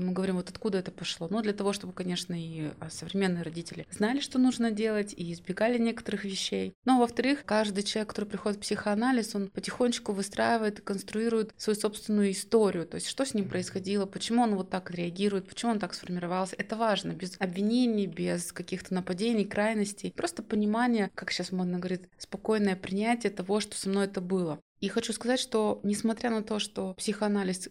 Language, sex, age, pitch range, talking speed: Russian, female, 20-39, 185-220 Hz, 190 wpm